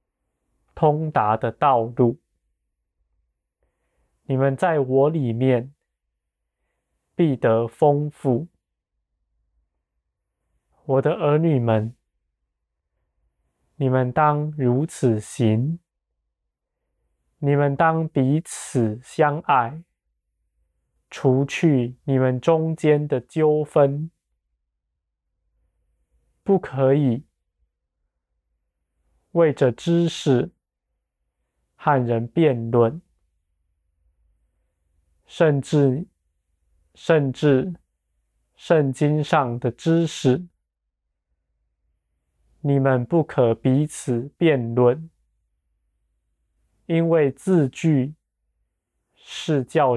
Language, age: Chinese, 20-39